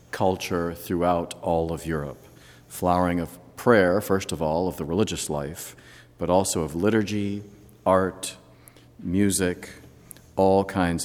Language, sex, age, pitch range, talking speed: English, male, 50-69, 80-100 Hz, 125 wpm